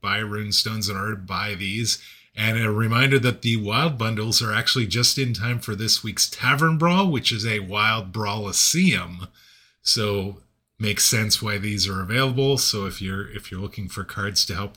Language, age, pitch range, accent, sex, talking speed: English, 30-49, 105-135 Hz, American, male, 185 wpm